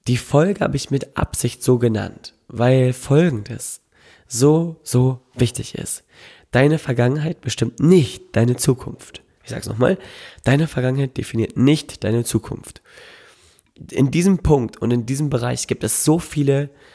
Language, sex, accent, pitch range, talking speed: German, male, German, 115-140 Hz, 145 wpm